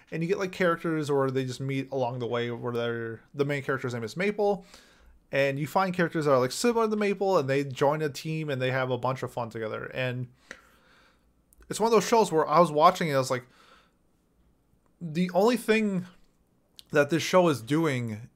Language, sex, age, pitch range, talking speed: English, male, 20-39, 130-185 Hz, 210 wpm